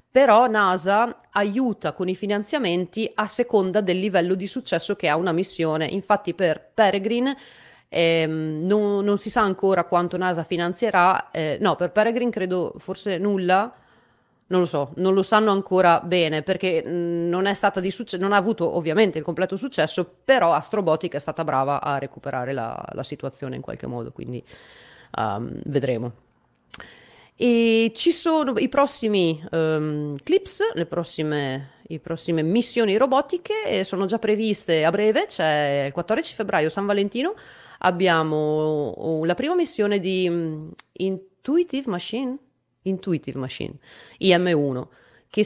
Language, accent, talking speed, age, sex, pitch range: Italian, native, 145 wpm, 30-49, female, 165-215 Hz